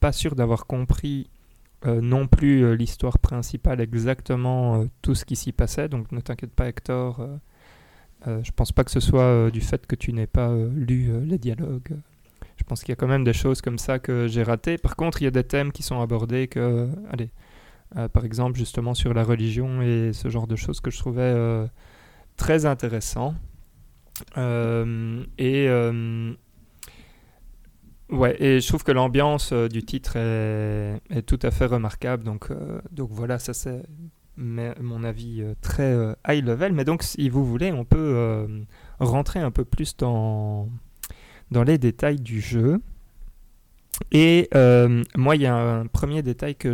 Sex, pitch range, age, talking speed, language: male, 115-140 Hz, 20-39, 190 wpm, French